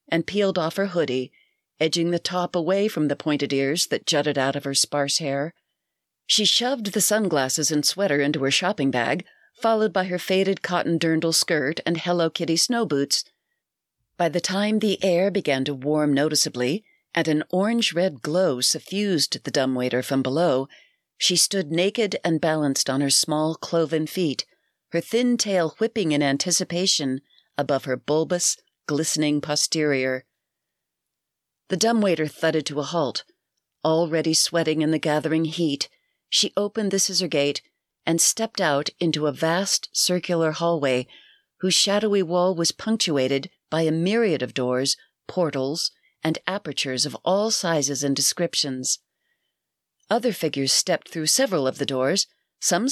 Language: English